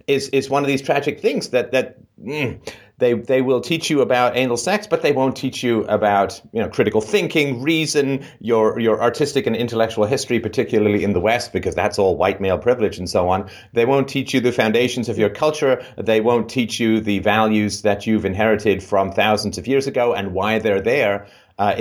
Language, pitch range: English, 105-130 Hz